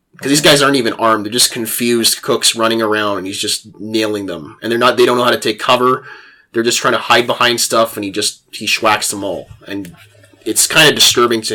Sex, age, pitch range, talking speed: male, 20-39, 105-125 Hz, 245 wpm